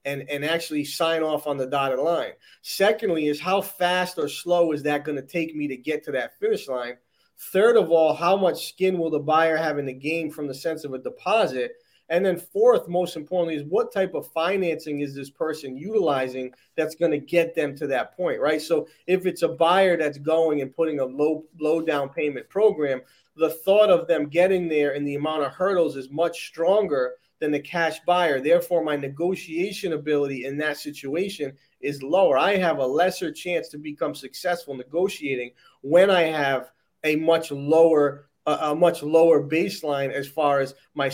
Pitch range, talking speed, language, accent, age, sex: 145-175 Hz, 195 wpm, English, American, 30-49, male